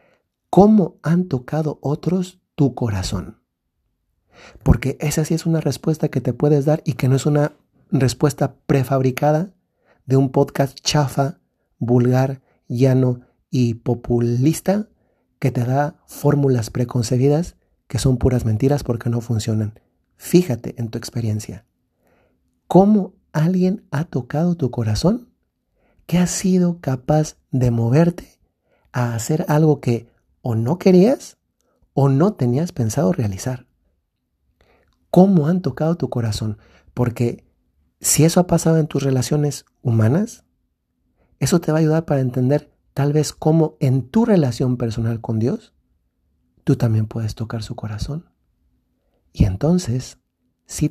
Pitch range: 115-150 Hz